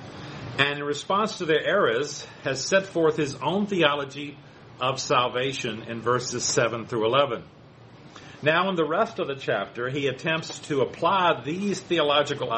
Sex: male